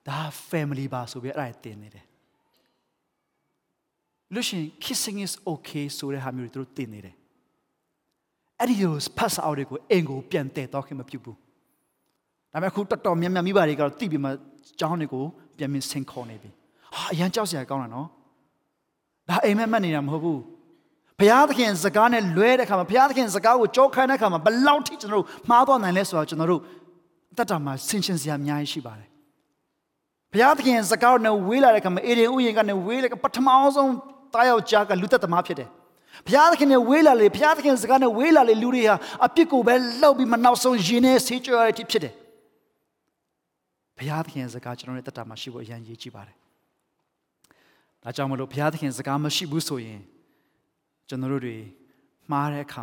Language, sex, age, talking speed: English, male, 30-49, 50 wpm